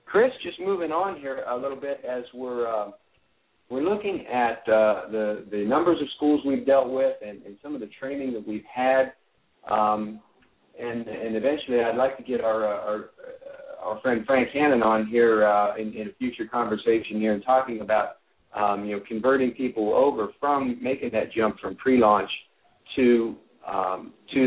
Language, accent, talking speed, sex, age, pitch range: English, American, 180 wpm, male, 50-69, 110-150 Hz